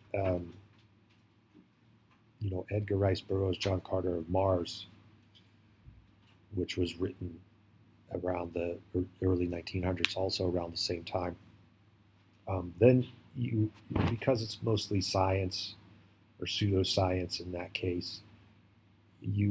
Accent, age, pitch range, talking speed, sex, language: American, 40-59, 95-105 Hz, 110 wpm, male, English